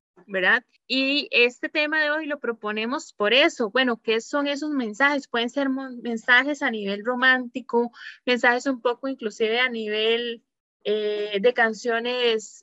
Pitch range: 225-290 Hz